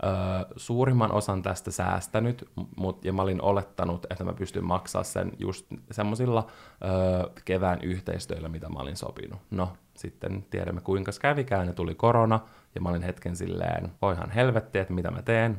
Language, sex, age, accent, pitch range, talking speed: Finnish, male, 20-39, native, 90-105 Hz, 170 wpm